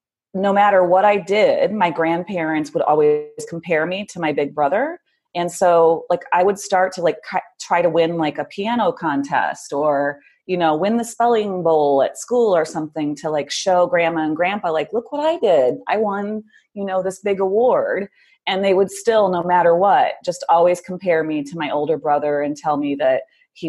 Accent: American